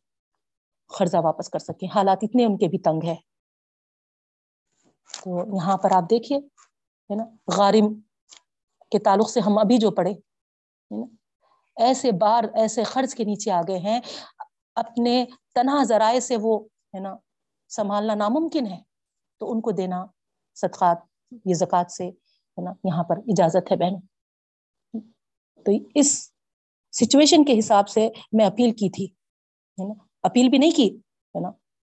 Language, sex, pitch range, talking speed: Urdu, female, 185-230 Hz, 140 wpm